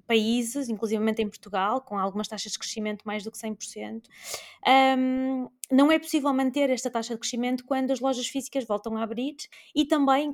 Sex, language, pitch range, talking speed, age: female, Portuguese, 220-265 Hz, 180 wpm, 20-39